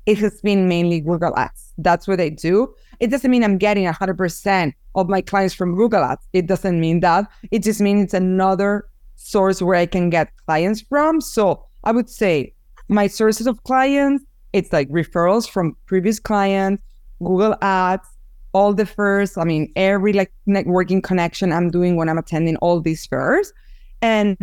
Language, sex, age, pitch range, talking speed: English, female, 20-39, 170-205 Hz, 180 wpm